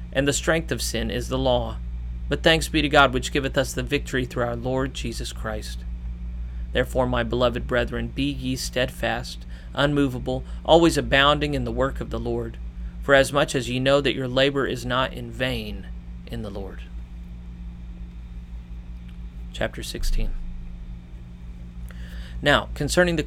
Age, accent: 30-49, American